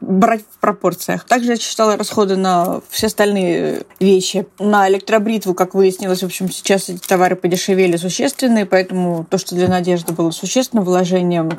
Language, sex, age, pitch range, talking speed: Russian, female, 30-49, 185-220 Hz, 155 wpm